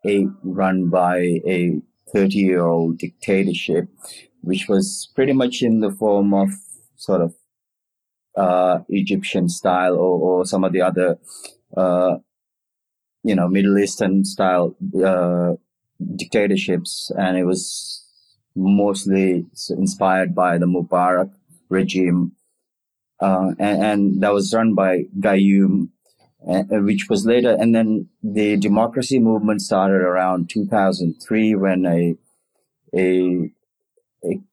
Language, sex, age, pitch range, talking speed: English, male, 30-49, 90-100 Hz, 115 wpm